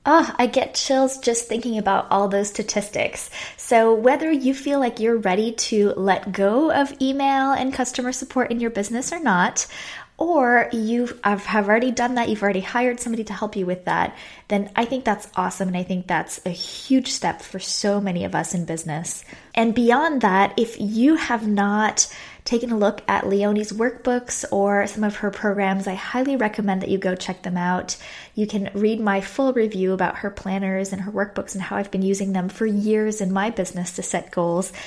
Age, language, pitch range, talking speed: 20-39, English, 190-240 Hz, 200 wpm